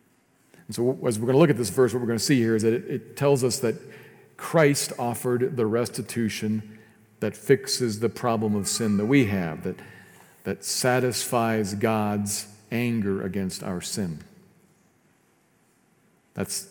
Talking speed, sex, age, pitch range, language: 160 wpm, male, 50-69, 110-145 Hz, English